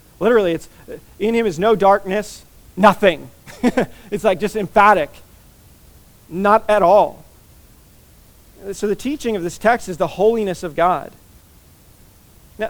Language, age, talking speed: English, 40-59, 130 wpm